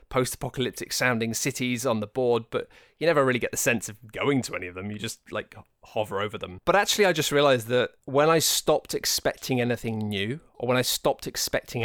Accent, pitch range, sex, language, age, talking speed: British, 115-140 Hz, male, English, 20-39, 215 wpm